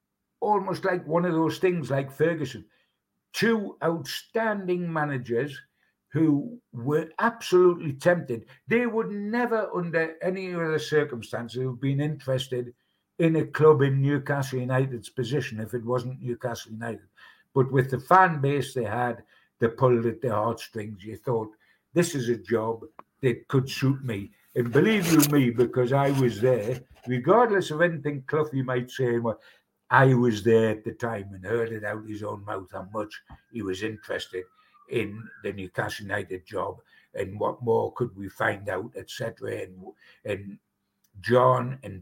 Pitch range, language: 115-160 Hz, English